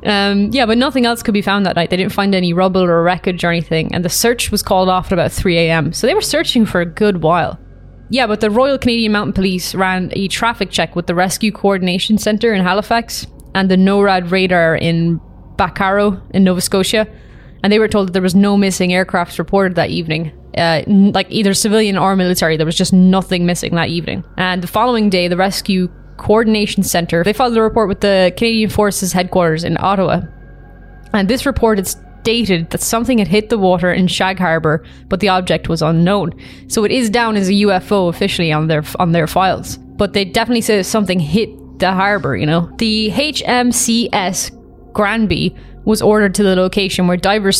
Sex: female